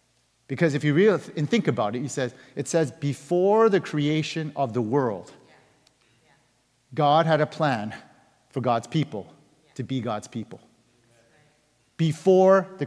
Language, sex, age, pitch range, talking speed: English, male, 40-59, 125-165 Hz, 135 wpm